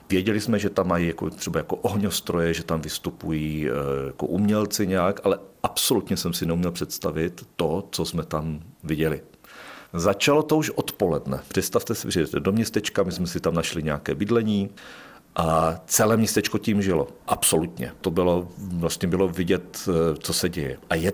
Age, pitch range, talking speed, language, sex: 50-69, 80-95 Hz, 165 wpm, Czech, male